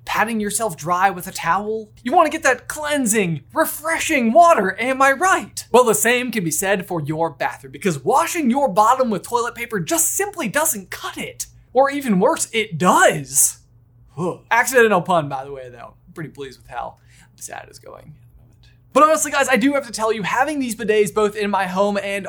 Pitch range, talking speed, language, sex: 175-255 Hz, 200 wpm, English, male